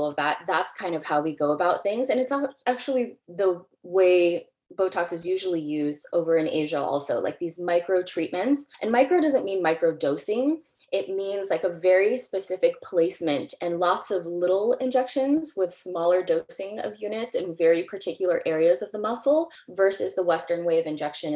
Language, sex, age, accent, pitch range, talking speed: English, female, 20-39, American, 160-195 Hz, 175 wpm